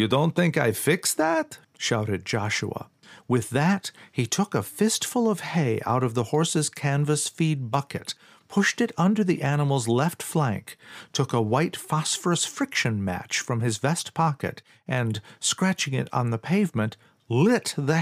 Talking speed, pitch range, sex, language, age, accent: 150 wpm, 120-175 Hz, male, English, 50-69, American